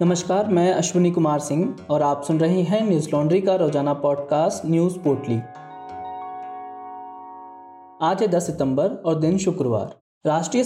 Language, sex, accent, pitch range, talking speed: Hindi, male, native, 165-200 Hz, 135 wpm